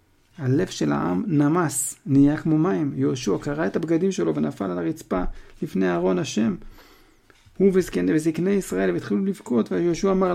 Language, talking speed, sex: Hebrew, 145 wpm, male